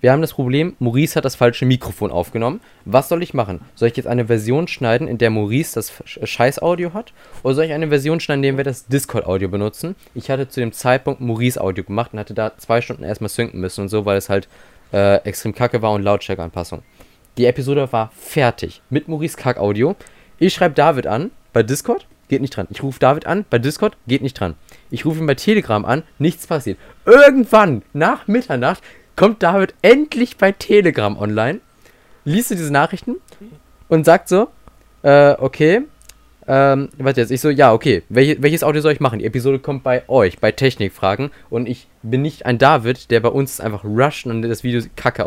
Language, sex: German, male